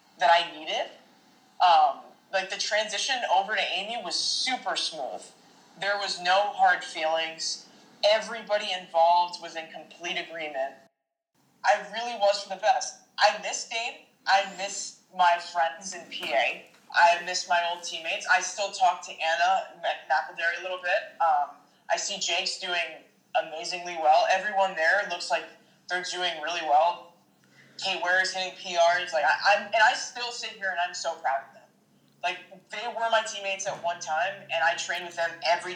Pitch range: 170-210 Hz